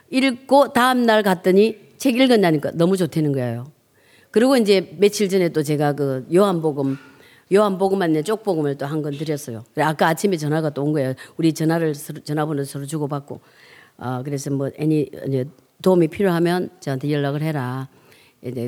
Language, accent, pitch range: Korean, native, 150-235 Hz